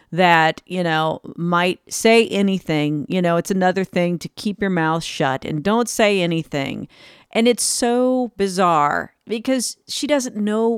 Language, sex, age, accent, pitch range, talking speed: English, female, 40-59, American, 150-185 Hz, 155 wpm